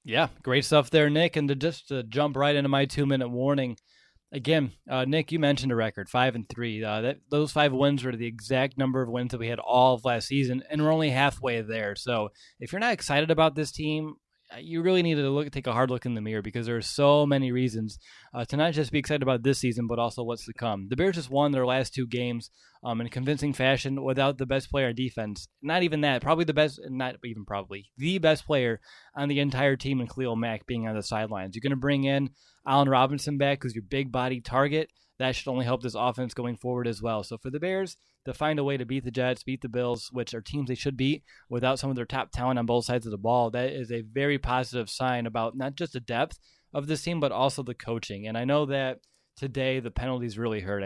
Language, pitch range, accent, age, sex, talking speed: English, 120-140 Hz, American, 20-39, male, 250 wpm